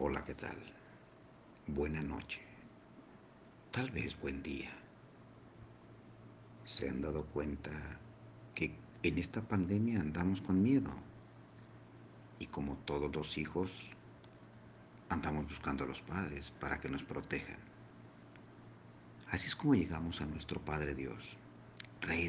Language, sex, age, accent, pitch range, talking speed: Spanish, male, 50-69, Mexican, 70-95 Hz, 115 wpm